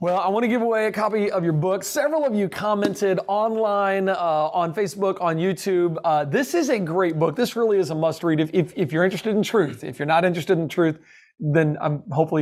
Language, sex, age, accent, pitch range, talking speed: English, male, 40-59, American, 165-205 Hz, 235 wpm